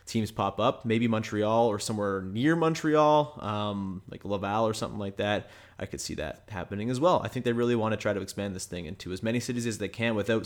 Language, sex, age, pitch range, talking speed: English, male, 20-39, 105-145 Hz, 240 wpm